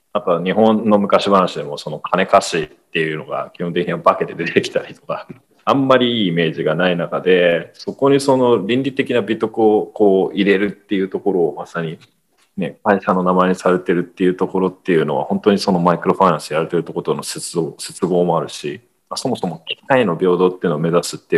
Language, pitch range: Japanese, 90-130 Hz